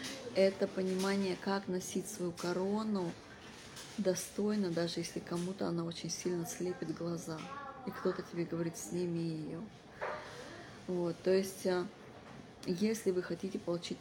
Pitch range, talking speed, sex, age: 170-190 Hz, 120 wpm, female, 20-39